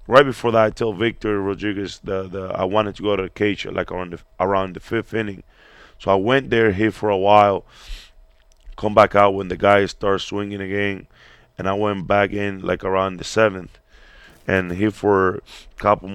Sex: male